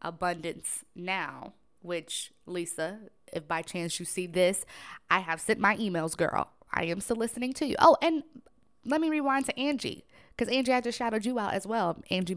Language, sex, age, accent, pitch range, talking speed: English, female, 20-39, American, 175-240 Hz, 185 wpm